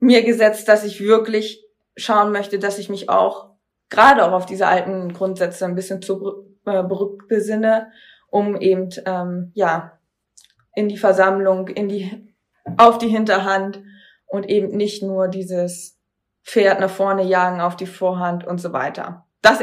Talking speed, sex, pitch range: 155 wpm, female, 190-220 Hz